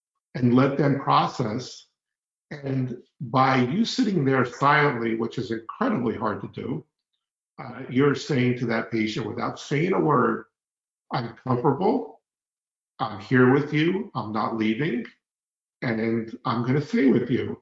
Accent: American